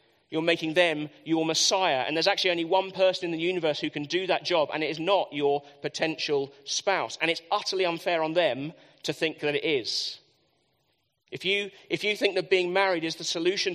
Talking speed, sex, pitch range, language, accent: 210 wpm, male, 160-195 Hz, English, British